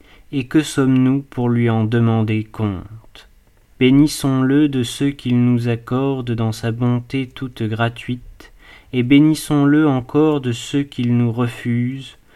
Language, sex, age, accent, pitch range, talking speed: French, male, 40-59, French, 115-140 Hz, 130 wpm